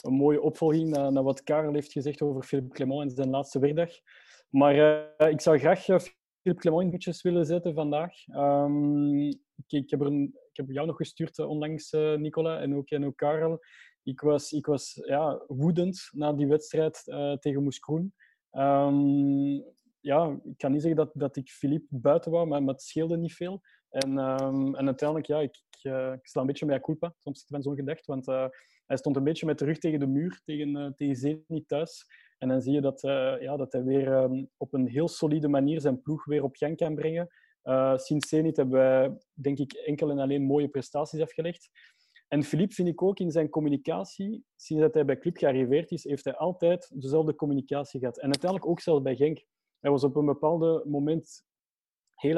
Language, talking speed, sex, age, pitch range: Dutch, 205 wpm, male, 20-39, 140-160 Hz